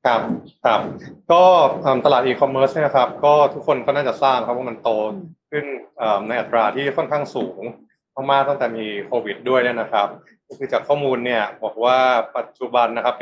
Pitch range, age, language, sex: 115-140 Hz, 20-39, Thai, male